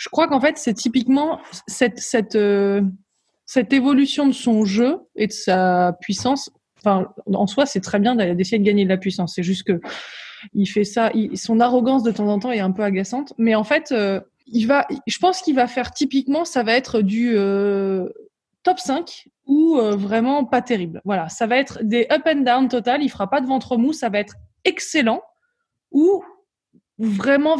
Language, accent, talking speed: French, French, 200 wpm